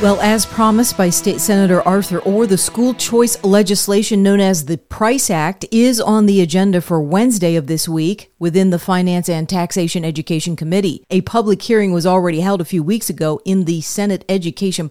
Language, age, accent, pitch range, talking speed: English, 40-59, American, 165-195 Hz, 190 wpm